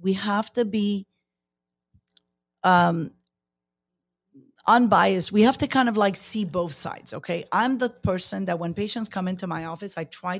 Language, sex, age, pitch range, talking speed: English, female, 40-59, 175-235 Hz, 160 wpm